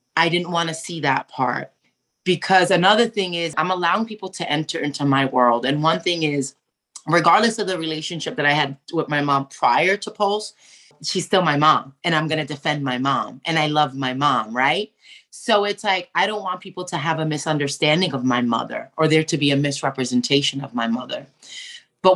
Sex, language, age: female, English, 30-49